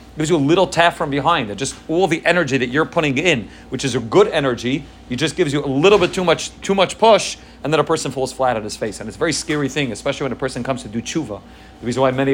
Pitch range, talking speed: 125-155 Hz, 285 wpm